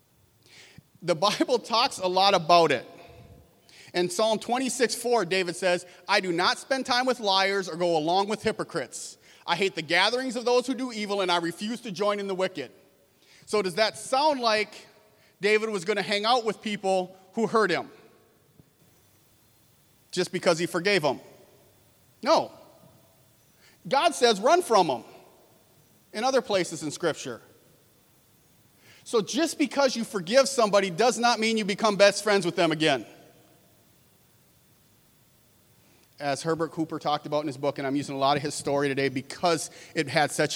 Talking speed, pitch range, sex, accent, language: 165 wpm, 150-210 Hz, male, American, English